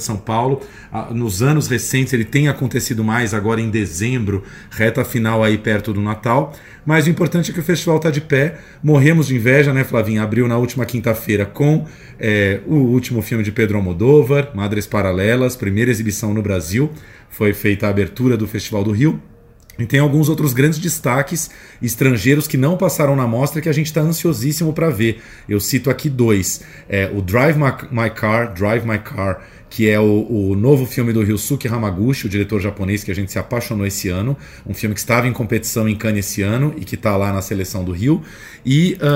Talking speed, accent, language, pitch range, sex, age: 200 wpm, Brazilian, Portuguese, 105-140 Hz, male, 40-59